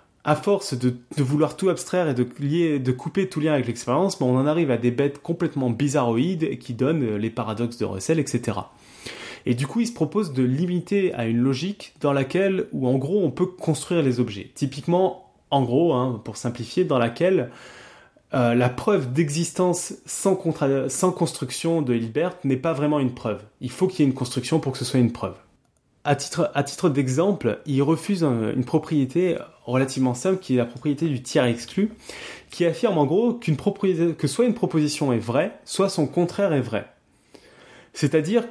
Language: French